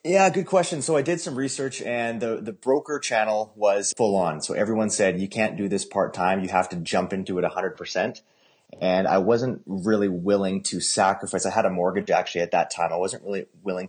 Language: English